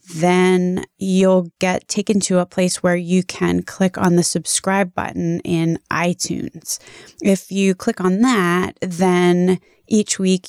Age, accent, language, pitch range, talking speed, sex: 20-39, American, English, 170-195 Hz, 145 wpm, female